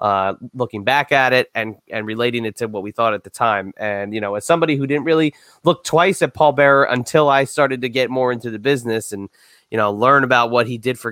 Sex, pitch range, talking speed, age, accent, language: male, 110-140 Hz, 255 wpm, 20-39, American, English